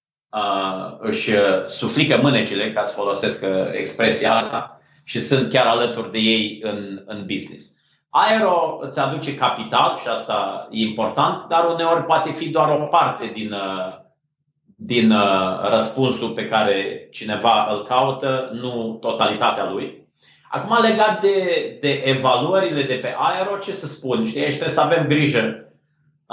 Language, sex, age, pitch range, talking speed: Romanian, male, 30-49, 110-150 Hz, 135 wpm